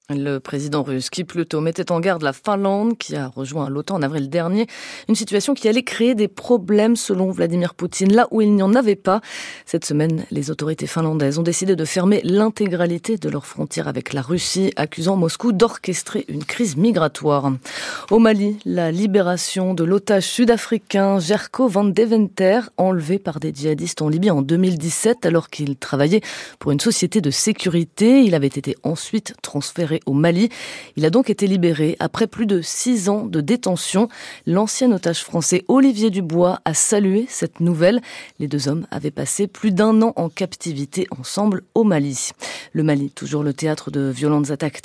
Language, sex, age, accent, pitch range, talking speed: French, female, 30-49, French, 155-210 Hz, 175 wpm